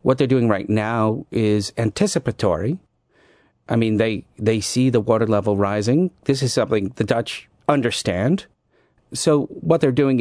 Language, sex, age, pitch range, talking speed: English, male, 40-59, 105-135 Hz, 155 wpm